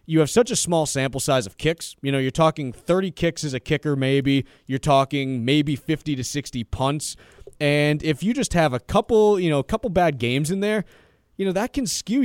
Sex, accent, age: male, American, 30-49